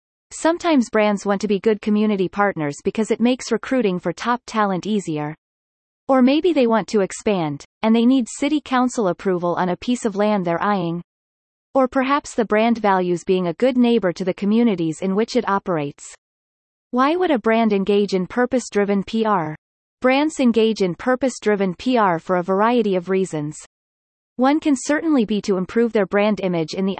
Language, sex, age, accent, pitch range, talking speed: English, female, 30-49, American, 185-245 Hz, 180 wpm